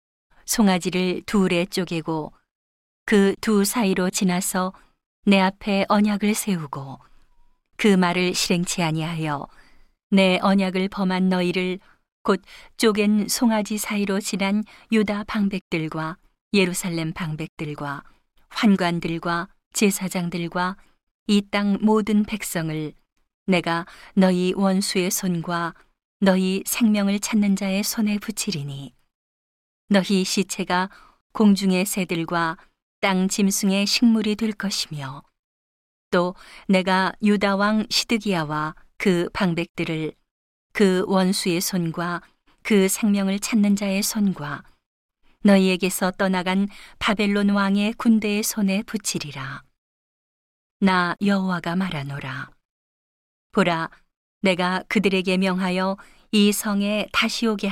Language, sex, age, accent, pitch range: Korean, female, 40-59, native, 175-205 Hz